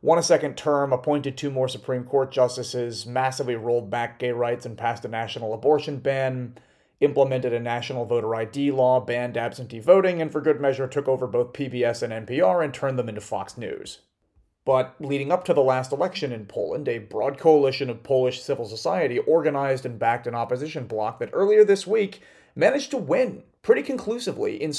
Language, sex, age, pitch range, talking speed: English, male, 30-49, 120-155 Hz, 190 wpm